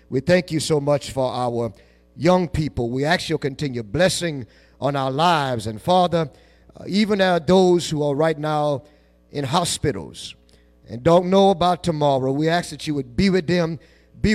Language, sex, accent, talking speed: English, male, American, 180 wpm